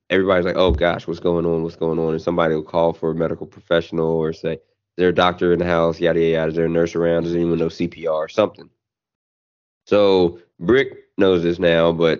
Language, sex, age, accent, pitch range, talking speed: English, male, 20-39, American, 85-100 Hz, 215 wpm